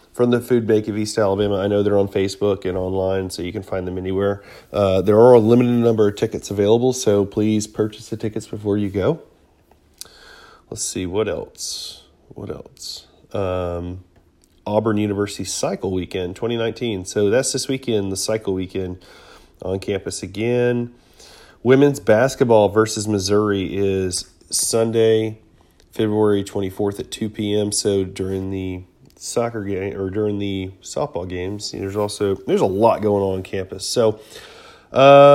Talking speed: 155 wpm